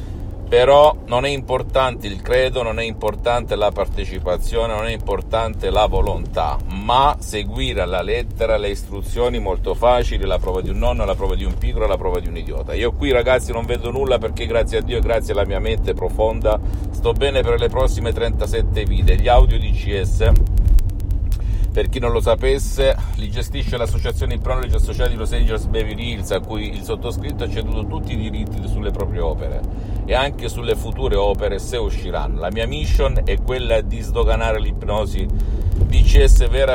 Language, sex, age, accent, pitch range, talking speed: Italian, male, 50-69, native, 90-115 Hz, 180 wpm